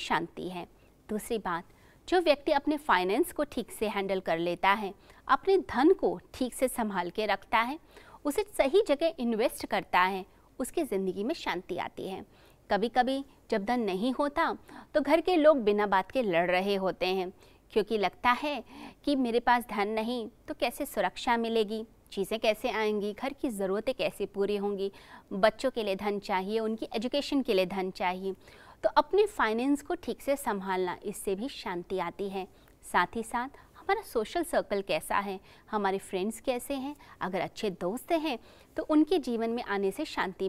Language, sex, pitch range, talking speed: Hindi, female, 195-280 Hz, 180 wpm